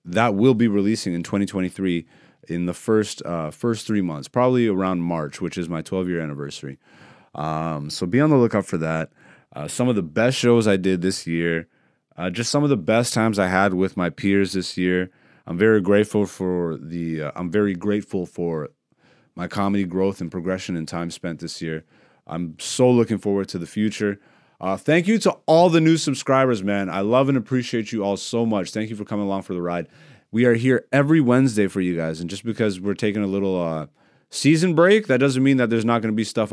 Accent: American